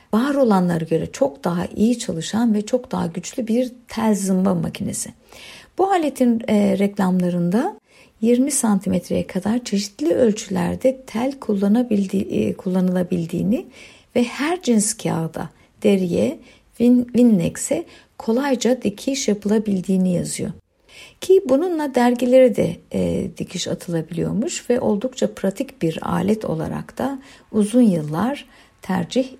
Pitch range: 185-250 Hz